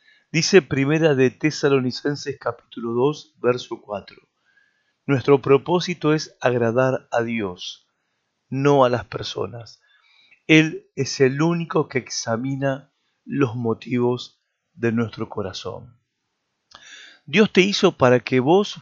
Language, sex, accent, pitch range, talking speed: Spanish, male, Argentinian, 125-155 Hz, 110 wpm